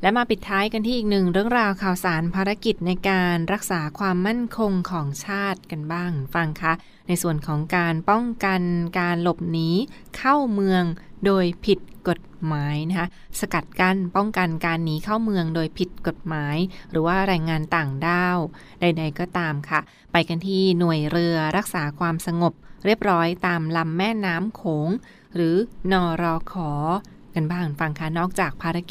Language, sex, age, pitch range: Thai, female, 20-39, 165-195 Hz